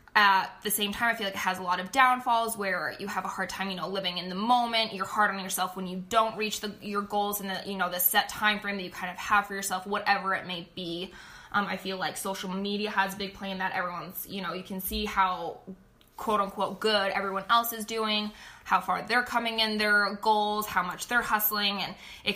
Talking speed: 250 wpm